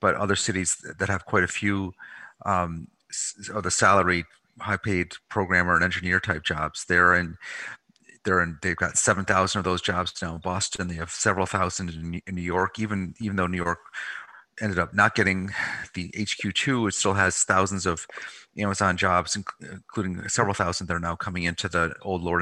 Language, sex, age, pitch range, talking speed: English, male, 30-49, 90-100 Hz, 190 wpm